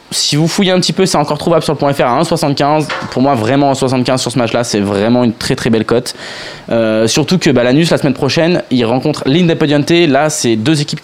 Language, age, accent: French, 20-39, French